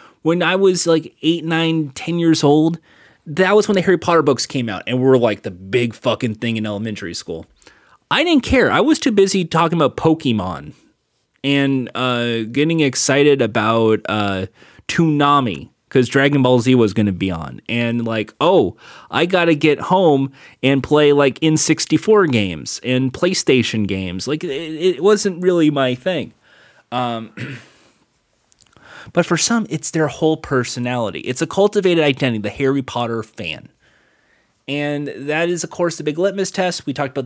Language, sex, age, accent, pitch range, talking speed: English, male, 30-49, American, 120-160 Hz, 170 wpm